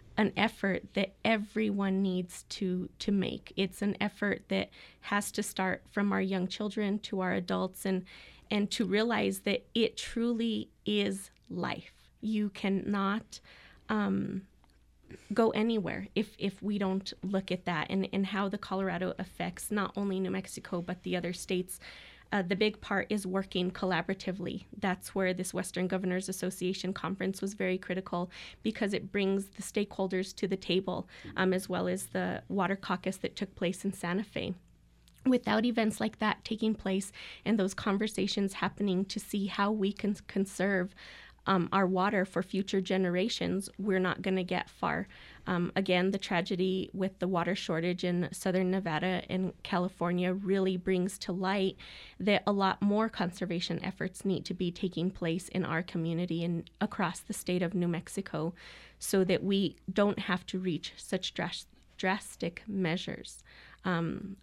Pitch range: 180-200 Hz